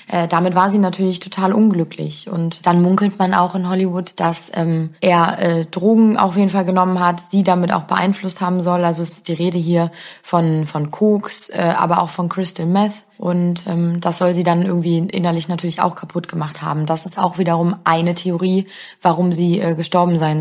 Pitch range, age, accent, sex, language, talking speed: 175-205 Hz, 20-39, German, female, German, 200 wpm